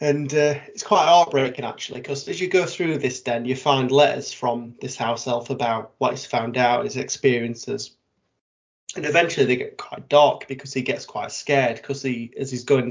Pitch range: 120-140 Hz